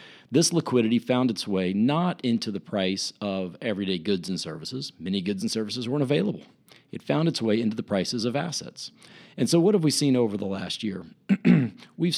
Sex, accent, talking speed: male, American, 195 wpm